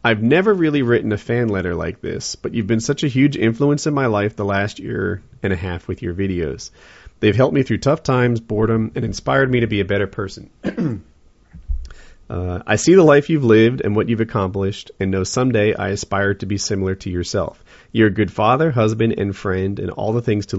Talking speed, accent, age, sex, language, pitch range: 220 wpm, American, 30-49, male, English, 95-115 Hz